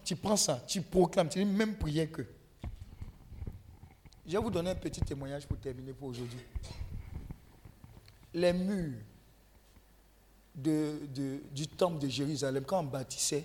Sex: male